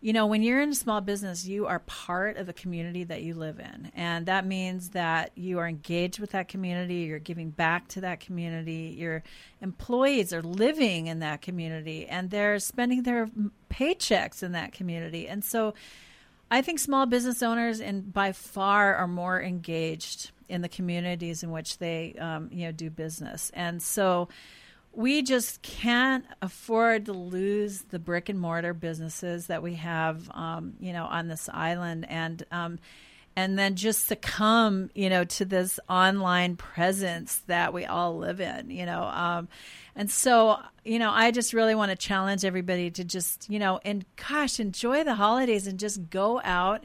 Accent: American